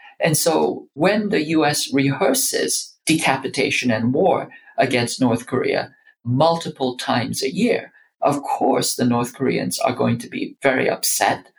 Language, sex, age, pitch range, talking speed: English, male, 50-69, 125-160 Hz, 140 wpm